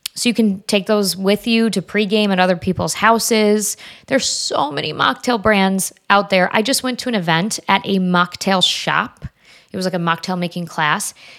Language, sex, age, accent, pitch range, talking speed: English, female, 20-39, American, 175-220 Hz, 195 wpm